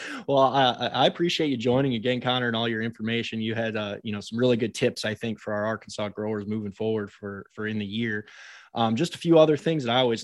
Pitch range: 110-125 Hz